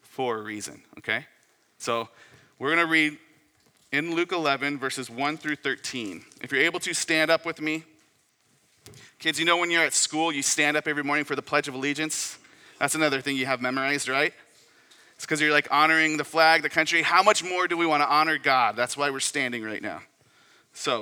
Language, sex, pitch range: English, male, 130-160 Hz